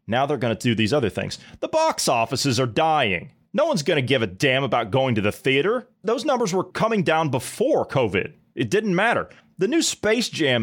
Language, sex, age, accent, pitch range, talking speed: English, male, 30-49, American, 115-185 Hz, 220 wpm